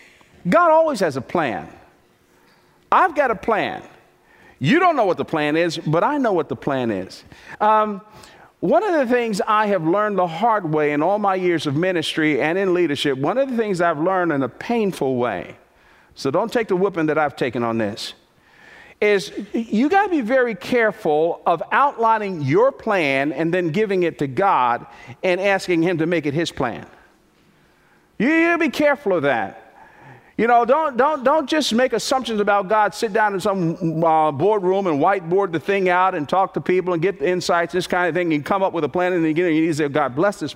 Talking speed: 215 wpm